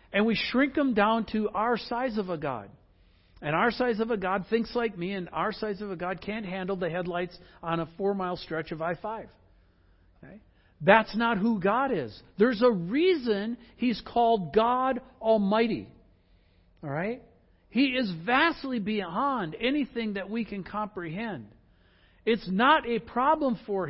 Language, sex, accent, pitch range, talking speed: English, male, American, 145-235 Hz, 155 wpm